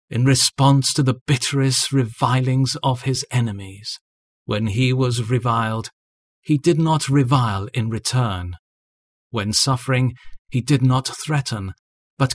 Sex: male